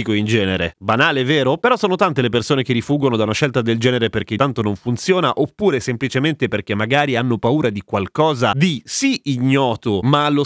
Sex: male